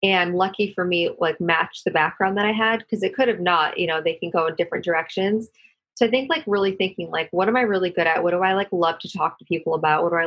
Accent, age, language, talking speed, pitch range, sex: American, 30-49, English, 290 wpm, 165-200 Hz, female